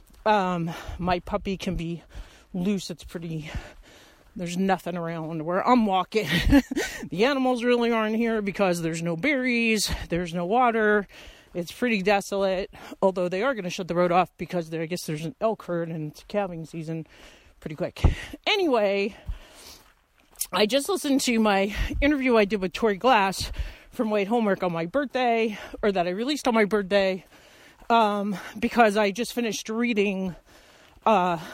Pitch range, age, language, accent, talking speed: 185-235 Hz, 40-59, English, American, 160 wpm